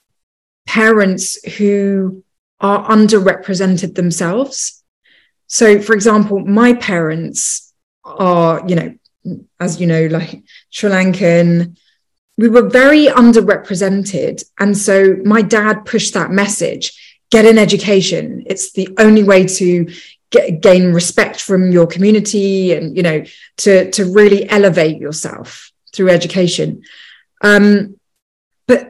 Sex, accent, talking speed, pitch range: female, British, 115 wpm, 170-210 Hz